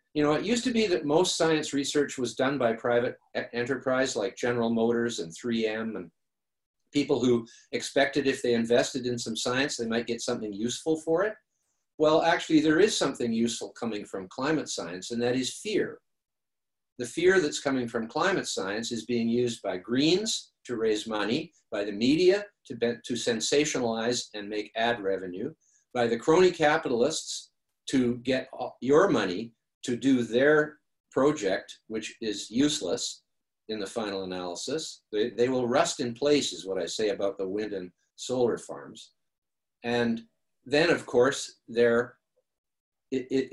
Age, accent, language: 50-69, American, English